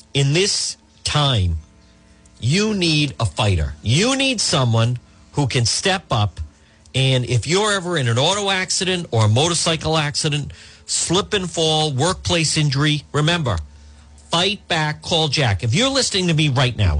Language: English